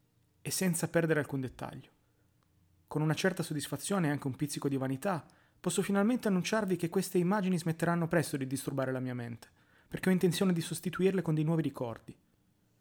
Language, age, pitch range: Italian, 30-49, 130-170 Hz